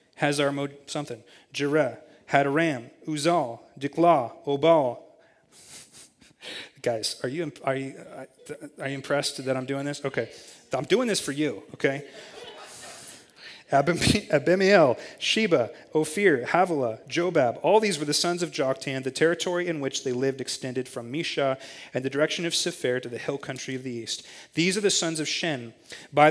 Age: 30-49